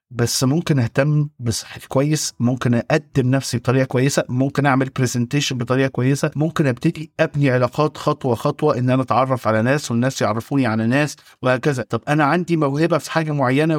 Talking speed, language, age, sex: 165 wpm, Arabic, 50-69, male